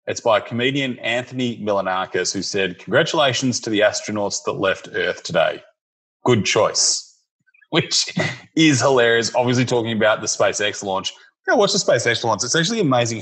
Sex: male